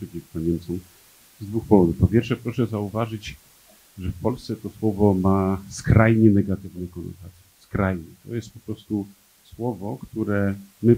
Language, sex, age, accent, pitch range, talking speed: Polish, male, 40-59, native, 90-115 Hz, 140 wpm